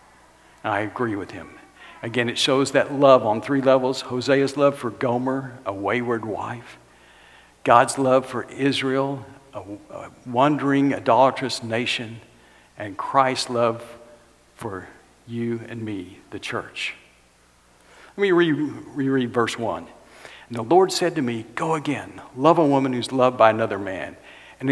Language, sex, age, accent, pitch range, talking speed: English, male, 60-79, American, 115-140 Hz, 145 wpm